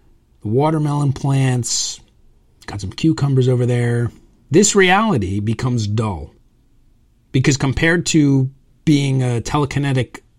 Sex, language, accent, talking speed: male, English, American, 100 wpm